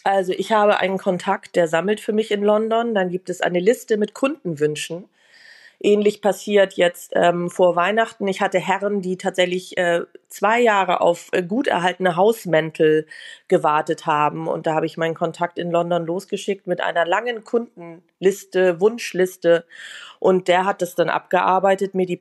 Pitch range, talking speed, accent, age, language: 175-195 Hz, 165 wpm, German, 30-49, German